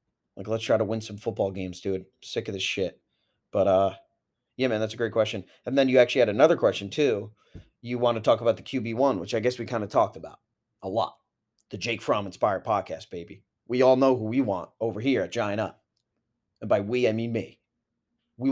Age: 30-49